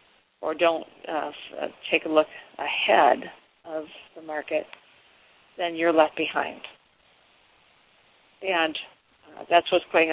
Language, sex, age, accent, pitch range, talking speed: English, female, 40-59, American, 155-175 Hz, 115 wpm